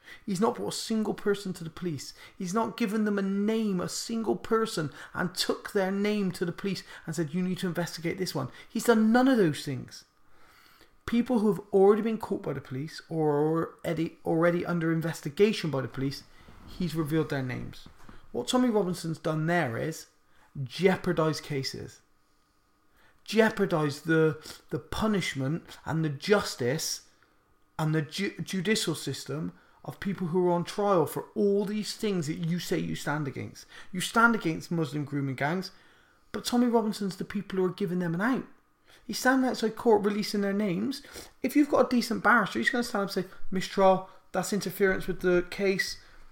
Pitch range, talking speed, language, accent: 165-210 Hz, 180 wpm, English, British